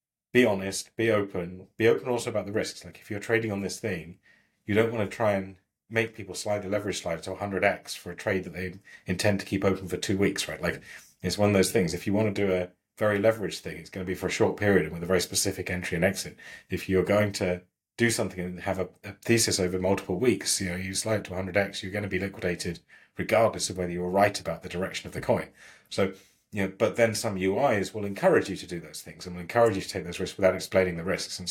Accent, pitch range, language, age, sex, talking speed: British, 90-105 Hz, English, 30-49, male, 260 wpm